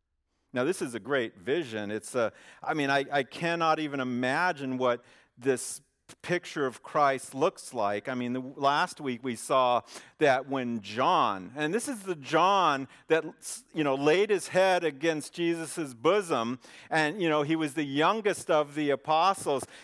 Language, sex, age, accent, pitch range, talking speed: English, male, 50-69, American, 135-185 Hz, 170 wpm